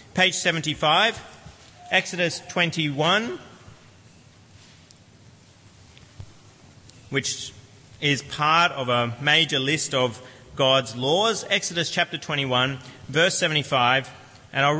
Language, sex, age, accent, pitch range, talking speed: English, male, 30-49, Australian, 125-155 Hz, 85 wpm